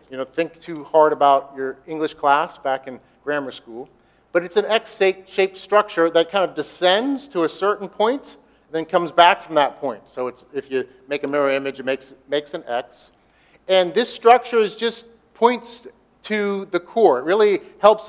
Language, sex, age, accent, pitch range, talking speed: English, male, 50-69, American, 150-200 Hz, 190 wpm